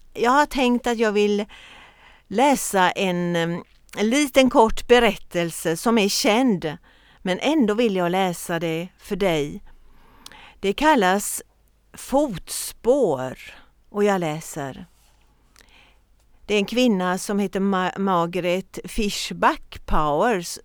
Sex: female